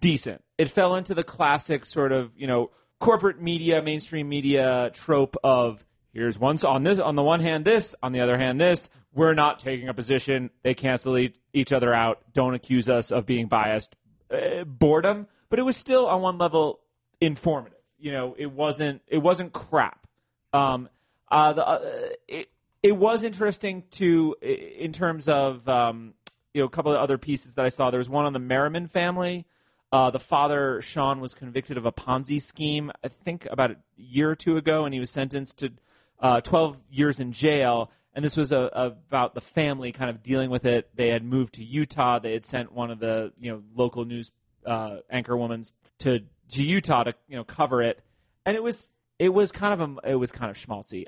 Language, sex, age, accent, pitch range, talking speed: English, male, 30-49, American, 125-165 Hz, 205 wpm